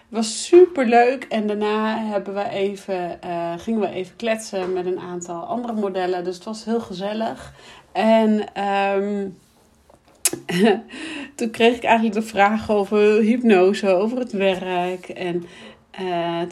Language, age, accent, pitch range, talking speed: Dutch, 40-59, Dutch, 180-220 Hz, 140 wpm